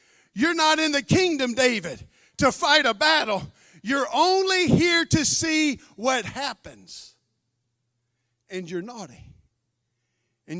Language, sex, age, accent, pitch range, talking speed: English, male, 50-69, American, 220-330 Hz, 120 wpm